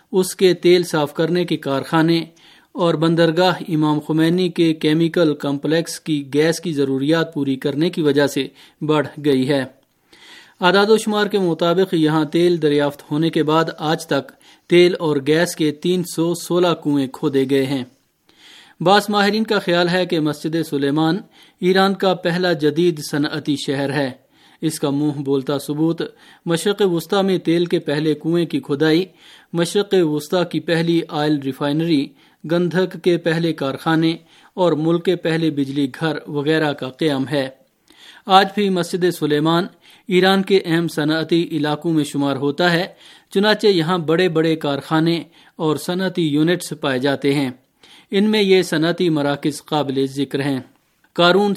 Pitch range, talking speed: 150-175 Hz, 155 wpm